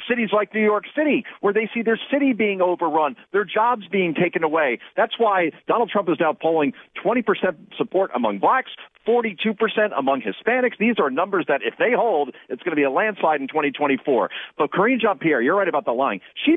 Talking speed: 200 wpm